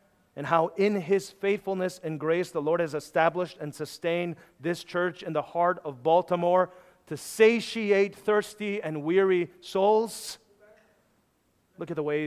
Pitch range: 140-180 Hz